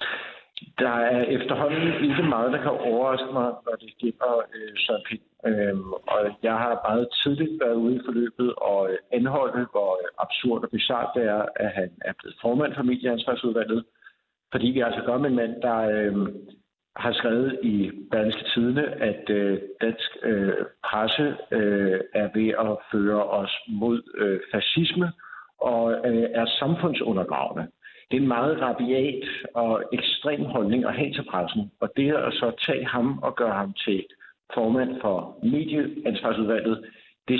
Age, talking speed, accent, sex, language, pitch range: 60-79, 155 wpm, native, male, Danish, 110-130 Hz